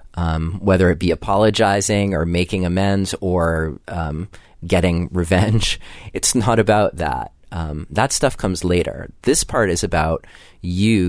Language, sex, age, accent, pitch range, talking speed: English, male, 30-49, American, 85-100 Hz, 140 wpm